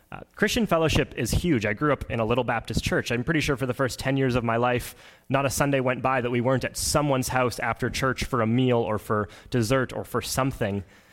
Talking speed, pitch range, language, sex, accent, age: 250 wpm, 110-135 Hz, English, male, American, 20-39